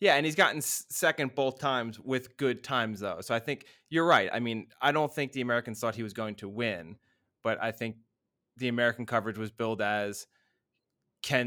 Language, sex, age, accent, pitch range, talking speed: English, male, 20-39, American, 110-125 Hz, 205 wpm